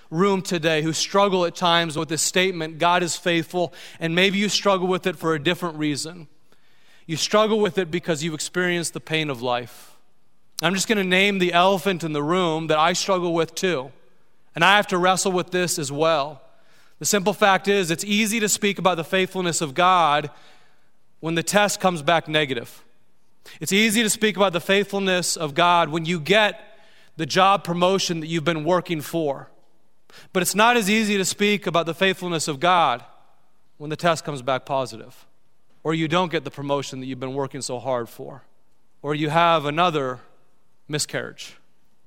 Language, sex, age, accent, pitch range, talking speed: English, male, 30-49, American, 155-190 Hz, 190 wpm